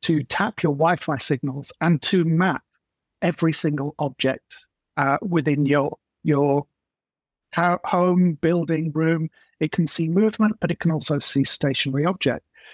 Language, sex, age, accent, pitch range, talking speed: English, male, 50-69, British, 145-175 Hz, 135 wpm